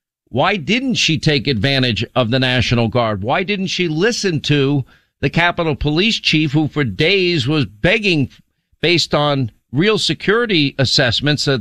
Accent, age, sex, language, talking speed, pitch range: American, 50-69, male, English, 150 wpm, 135-175 Hz